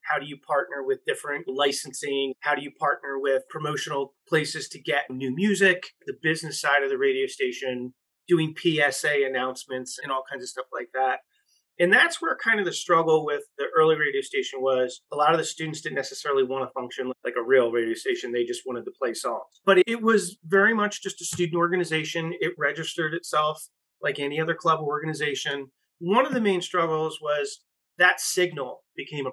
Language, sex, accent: English, male, American